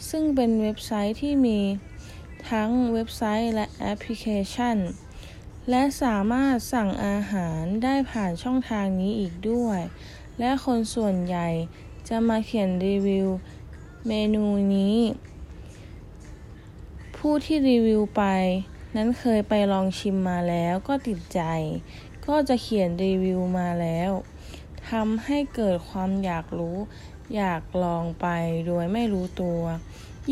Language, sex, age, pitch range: Thai, female, 20-39, 180-240 Hz